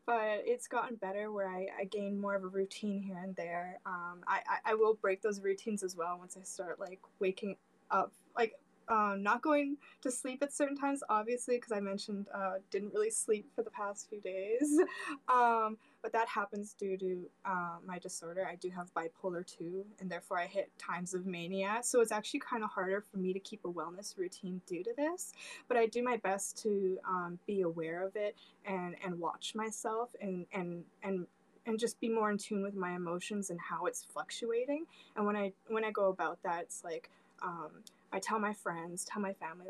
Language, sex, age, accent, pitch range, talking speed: English, female, 10-29, American, 185-225 Hz, 215 wpm